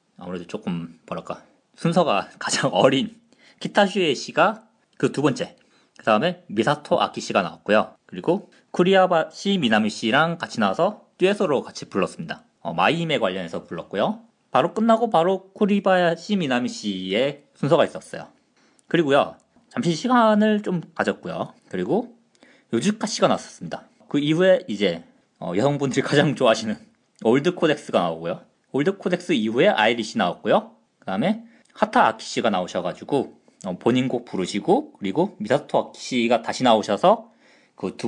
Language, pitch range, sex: Korean, 120-205 Hz, male